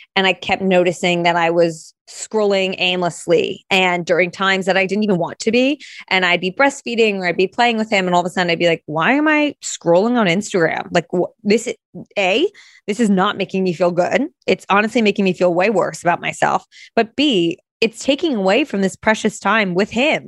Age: 20-39